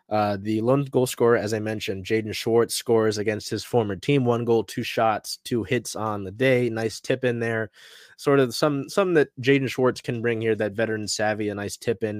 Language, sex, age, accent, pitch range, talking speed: English, male, 20-39, American, 105-130 Hz, 220 wpm